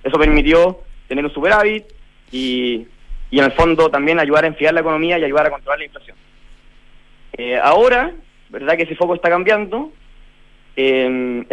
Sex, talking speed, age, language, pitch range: male, 160 wpm, 30-49, Spanish, 145-195 Hz